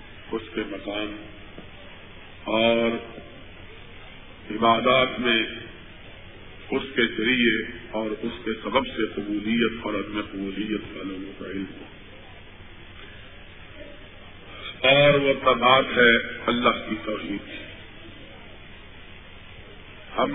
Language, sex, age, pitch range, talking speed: Urdu, male, 50-69, 95-115 Hz, 80 wpm